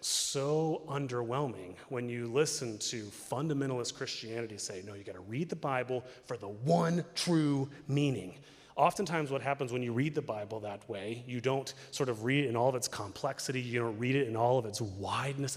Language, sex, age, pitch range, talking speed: English, male, 30-49, 125-160 Hz, 195 wpm